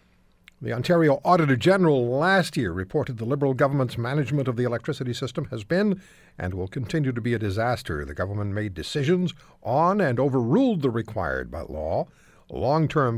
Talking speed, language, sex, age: 165 wpm, English, male, 60-79